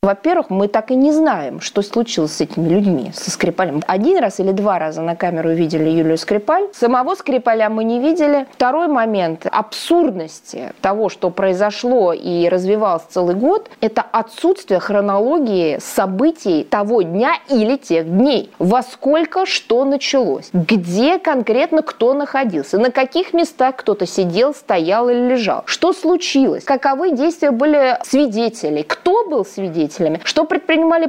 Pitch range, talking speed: 190-280 Hz, 145 wpm